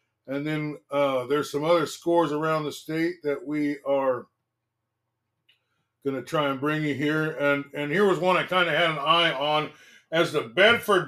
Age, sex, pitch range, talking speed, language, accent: 50-69, male, 140-170 Hz, 190 wpm, English, American